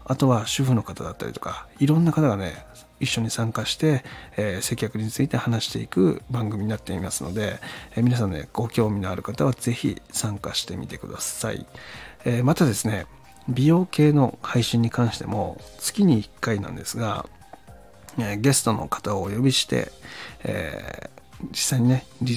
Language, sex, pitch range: Japanese, male, 105-130 Hz